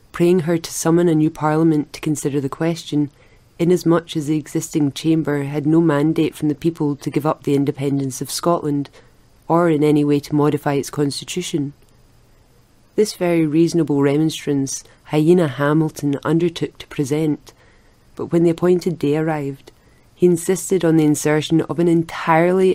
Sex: female